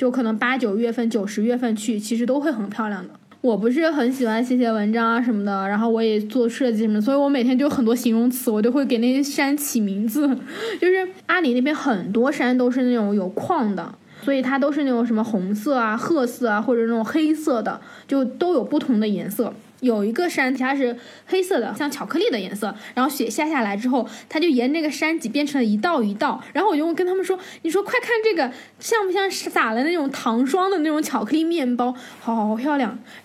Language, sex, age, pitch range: Chinese, female, 10-29, 230-295 Hz